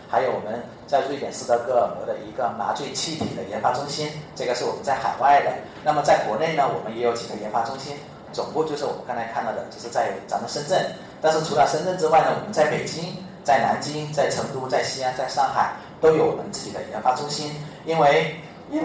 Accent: native